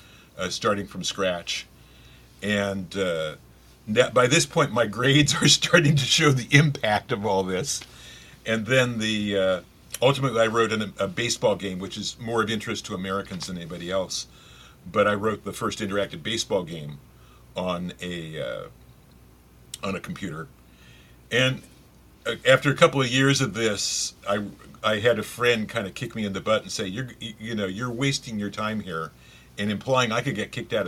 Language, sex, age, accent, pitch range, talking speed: English, male, 50-69, American, 95-120 Hz, 180 wpm